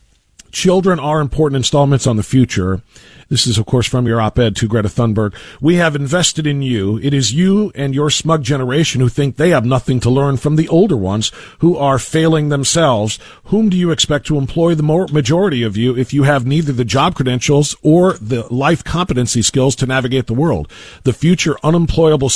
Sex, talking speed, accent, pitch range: male, 195 wpm, American, 130-185 Hz